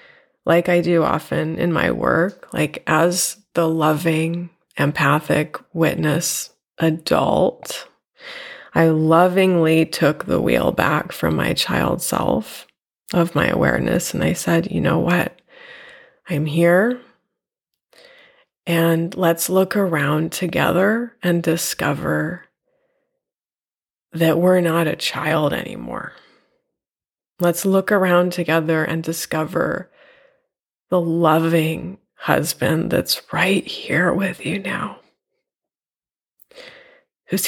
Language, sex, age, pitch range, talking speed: English, female, 20-39, 165-210 Hz, 100 wpm